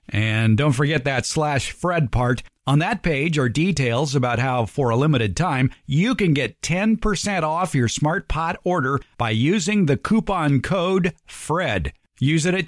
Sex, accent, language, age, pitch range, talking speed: male, American, English, 50-69, 125-175 Hz, 170 wpm